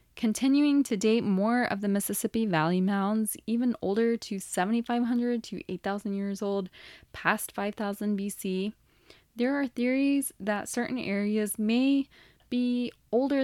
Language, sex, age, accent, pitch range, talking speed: English, female, 10-29, American, 185-240 Hz, 130 wpm